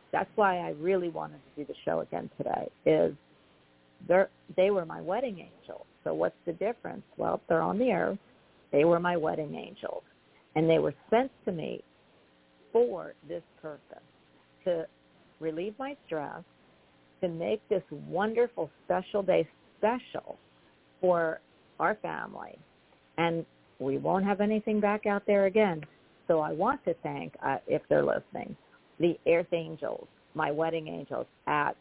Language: English